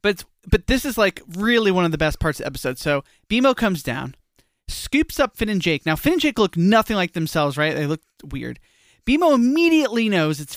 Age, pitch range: 20-39, 160-240 Hz